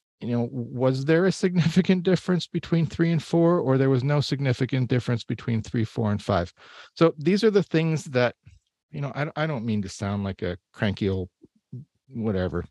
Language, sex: English, male